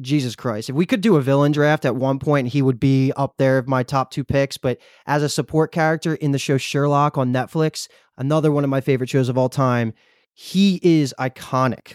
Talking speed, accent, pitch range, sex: 225 wpm, American, 130-150 Hz, male